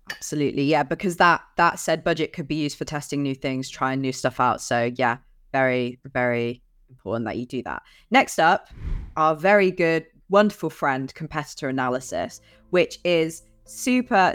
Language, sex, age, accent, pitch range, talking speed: English, female, 20-39, British, 145-185 Hz, 165 wpm